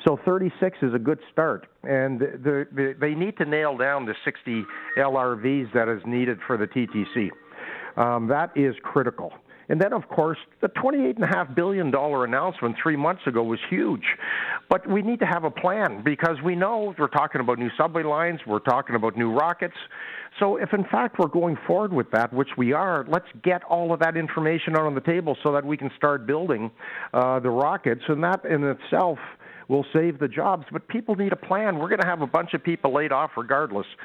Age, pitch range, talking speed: 50-69, 125-170 Hz, 200 wpm